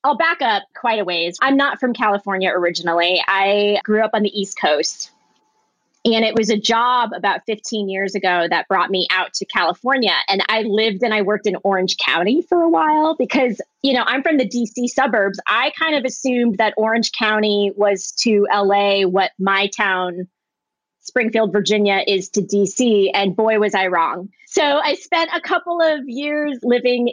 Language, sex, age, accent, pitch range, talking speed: English, female, 20-39, American, 200-250 Hz, 185 wpm